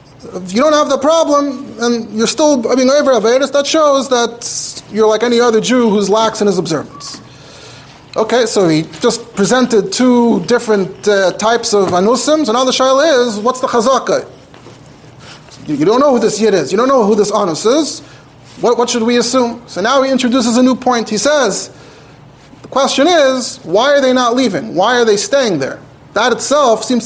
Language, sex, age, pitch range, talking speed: English, male, 30-49, 205-270 Hz, 195 wpm